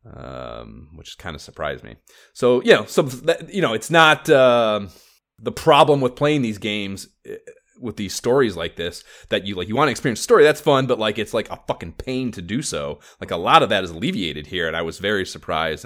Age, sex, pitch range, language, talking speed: 30-49, male, 95-130 Hz, English, 225 wpm